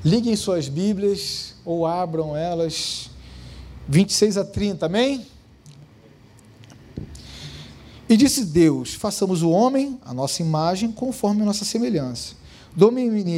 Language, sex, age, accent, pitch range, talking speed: Portuguese, male, 40-59, Brazilian, 160-215 Hz, 110 wpm